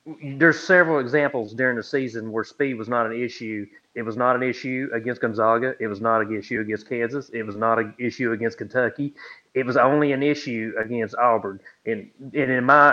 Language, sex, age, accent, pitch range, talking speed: English, male, 30-49, American, 120-155 Hz, 205 wpm